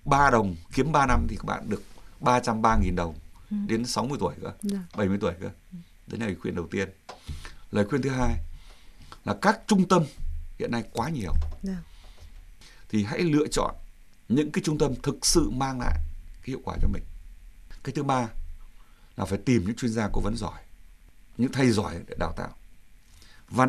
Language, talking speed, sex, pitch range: Vietnamese, 180 wpm, male, 80-125 Hz